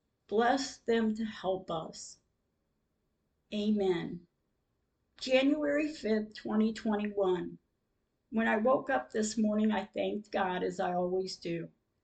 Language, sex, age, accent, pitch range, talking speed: English, female, 50-69, American, 185-220 Hz, 110 wpm